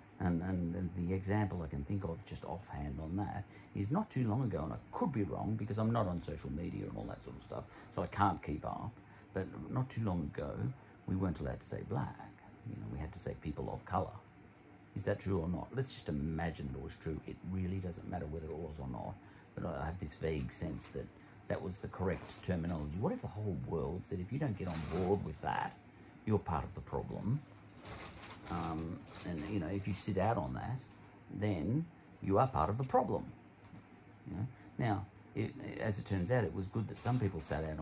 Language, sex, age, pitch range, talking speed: English, male, 50-69, 85-110 Hz, 220 wpm